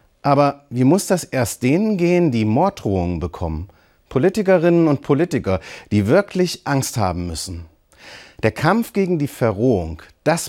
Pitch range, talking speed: 100-170 Hz, 135 wpm